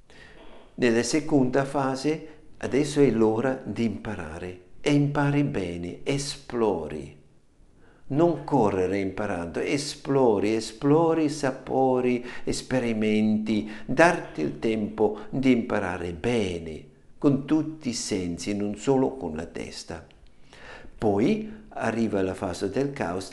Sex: male